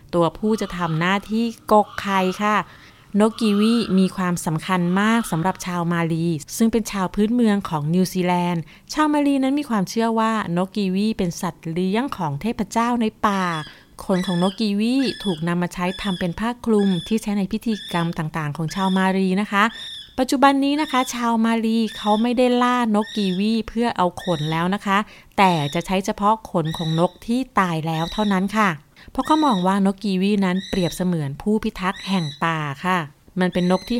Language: Thai